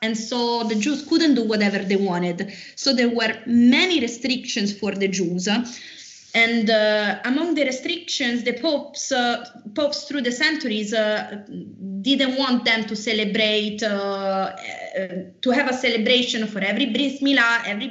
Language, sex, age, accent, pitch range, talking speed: English, female, 20-39, Italian, 210-270 Hz, 150 wpm